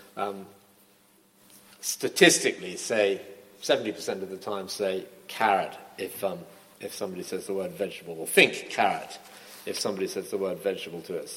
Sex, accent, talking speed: male, British, 150 wpm